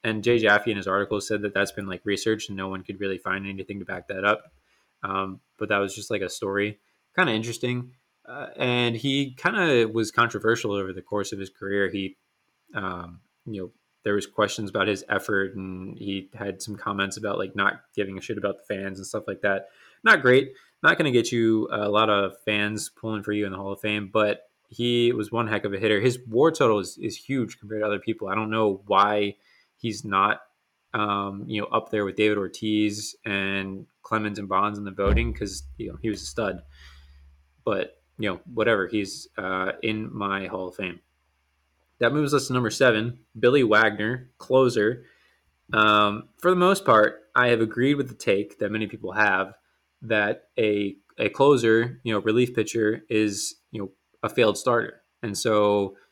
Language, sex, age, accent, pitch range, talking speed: English, male, 20-39, American, 100-115 Hz, 205 wpm